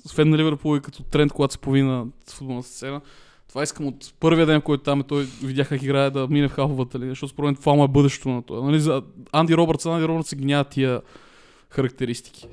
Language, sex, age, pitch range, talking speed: Bulgarian, male, 20-39, 130-150 Hz, 220 wpm